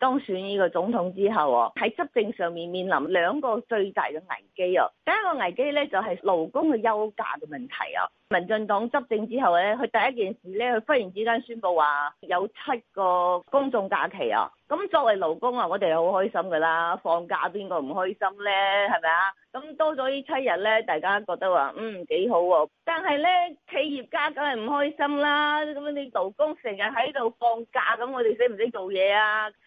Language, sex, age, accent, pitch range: Chinese, female, 30-49, native, 195-275 Hz